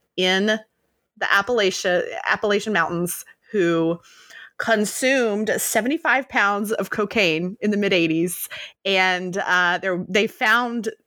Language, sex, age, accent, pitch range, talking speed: English, female, 30-49, American, 180-235 Hz, 105 wpm